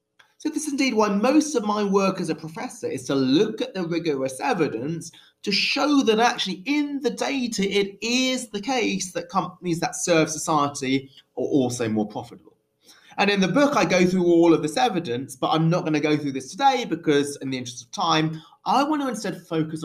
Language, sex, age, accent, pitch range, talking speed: English, male, 30-49, British, 135-210 Hz, 210 wpm